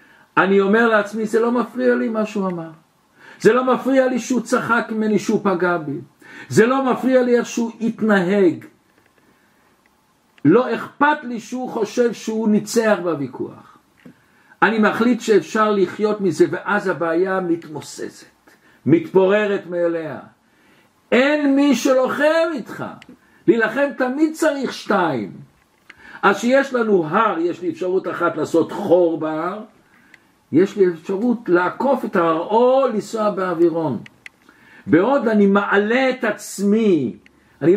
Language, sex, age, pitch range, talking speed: Hebrew, male, 60-79, 175-240 Hz, 125 wpm